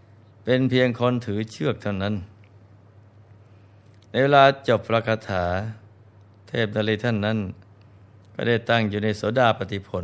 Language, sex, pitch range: Thai, male, 100-115 Hz